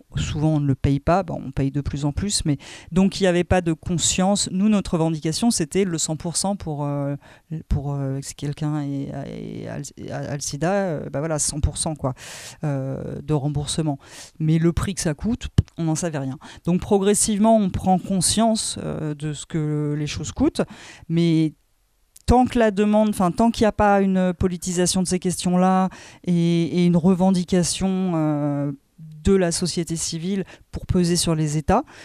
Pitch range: 150-185 Hz